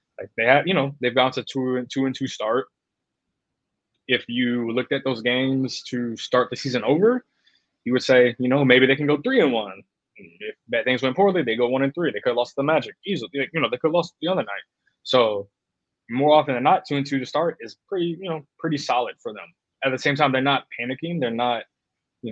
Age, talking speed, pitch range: 20-39, 245 wpm, 115-145 Hz